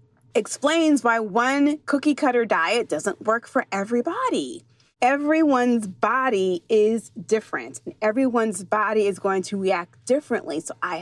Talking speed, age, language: 125 wpm, 30-49, English